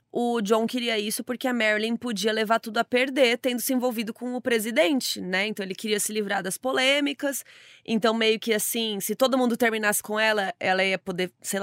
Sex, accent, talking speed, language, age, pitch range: female, Brazilian, 205 wpm, Portuguese, 20-39, 190-240 Hz